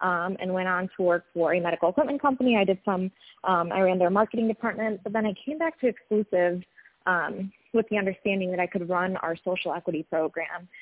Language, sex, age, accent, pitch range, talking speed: English, female, 20-39, American, 175-210 Hz, 215 wpm